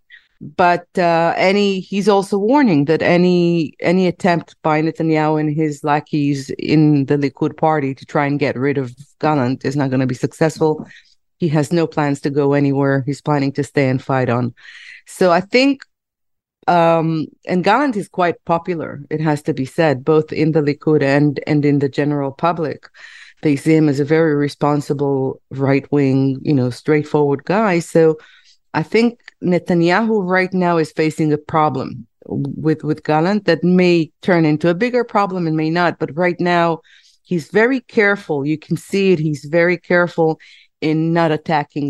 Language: English